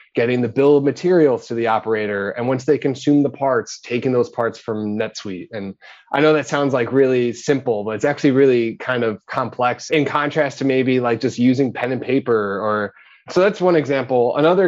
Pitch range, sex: 115-140 Hz, male